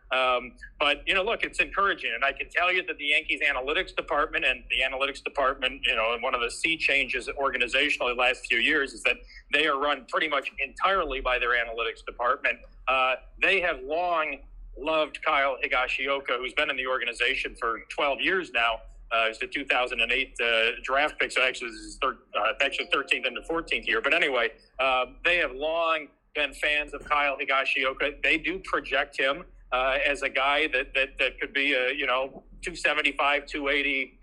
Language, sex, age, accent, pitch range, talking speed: English, male, 40-59, American, 130-155 Hz, 195 wpm